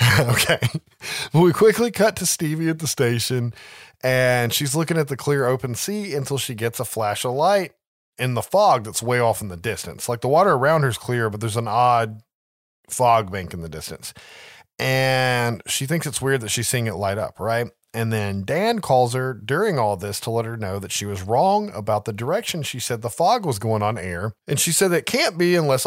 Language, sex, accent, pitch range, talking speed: English, male, American, 110-145 Hz, 220 wpm